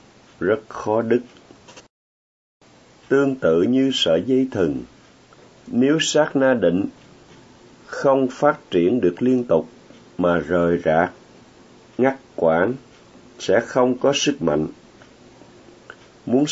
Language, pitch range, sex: Vietnamese, 90-135 Hz, male